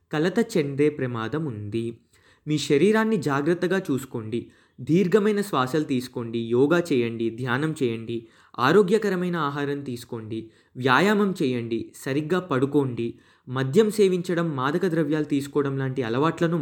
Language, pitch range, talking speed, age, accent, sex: English, 125-180 Hz, 100 wpm, 20-39, Indian, male